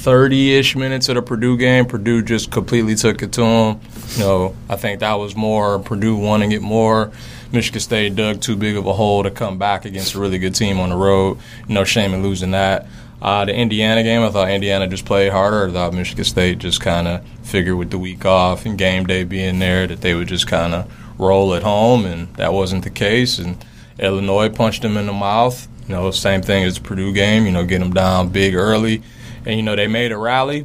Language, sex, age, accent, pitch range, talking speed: English, male, 20-39, American, 95-115 Hz, 230 wpm